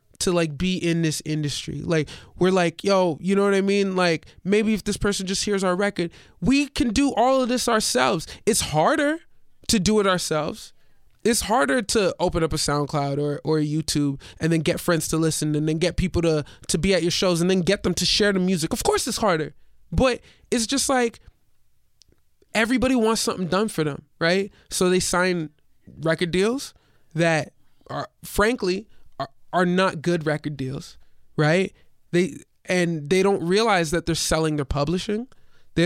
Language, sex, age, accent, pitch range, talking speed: English, male, 20-39, American, 160-200 Hz, 185 wpm